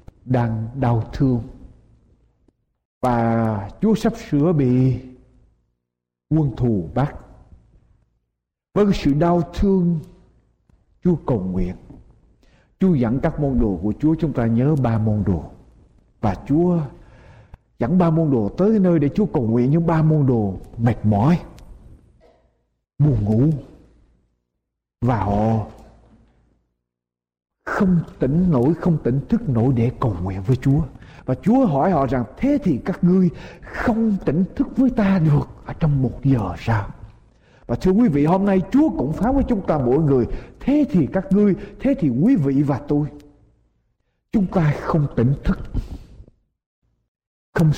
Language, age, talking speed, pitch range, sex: Vietnamese, 60-79, 145 wpm, 110-170 Hz, male